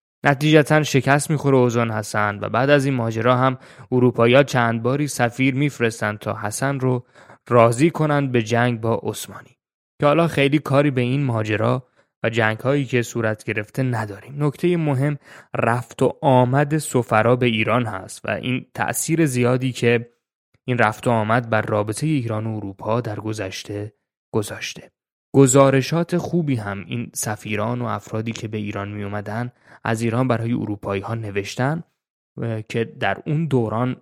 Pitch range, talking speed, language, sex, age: 110-135 Hz, 155 wpm, Persian, male, 20-39